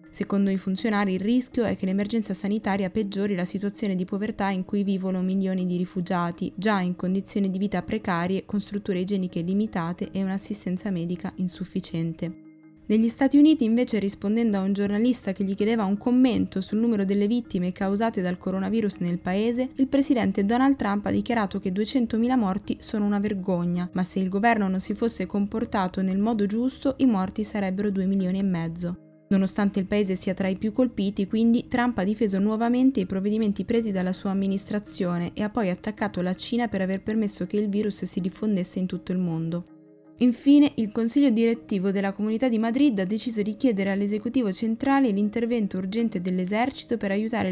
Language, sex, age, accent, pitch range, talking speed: Italian, female, 20-39, native, 190-225 Hz, 180 wpm